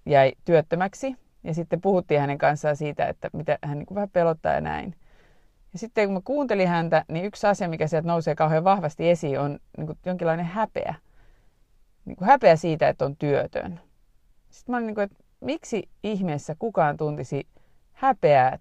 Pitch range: 160-215 Hz